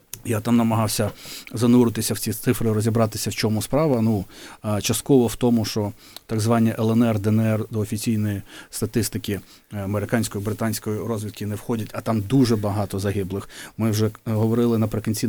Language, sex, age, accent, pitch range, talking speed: Ukrainian, male, 30-49, native, 105-120 Hz, 145 wpm